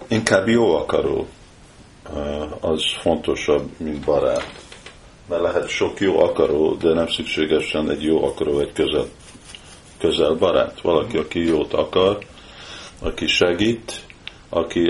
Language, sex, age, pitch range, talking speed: Hungarian, male, 50-69, 80-110 Hz, 115 wpm